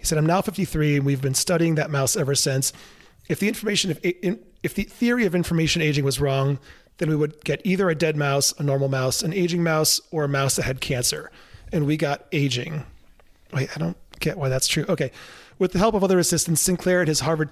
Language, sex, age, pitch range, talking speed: English, male, 30-49, 140-165 Hz, 235 wpm